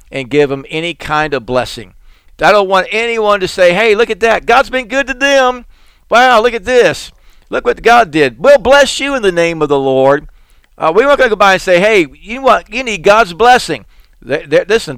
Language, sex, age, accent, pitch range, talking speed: English, male, 60-79, American, 130-205 Hz, 215 wpm